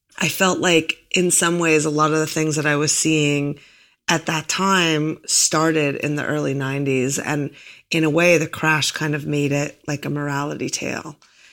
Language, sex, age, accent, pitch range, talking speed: English, female, 30-49, American, 145-165 Hz, 195 wpm